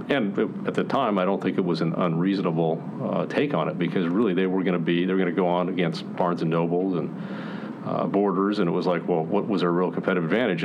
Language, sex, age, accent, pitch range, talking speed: English, male, 40-59, American, 85-105 Hz, 260 wpm